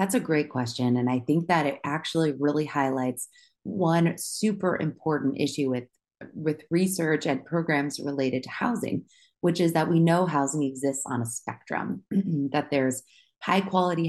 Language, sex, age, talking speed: English, female, 30-49, 160 wpm